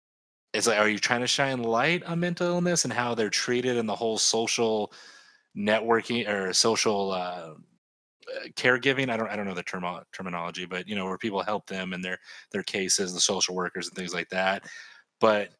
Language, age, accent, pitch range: English, 30-49, American, 90-115 Hz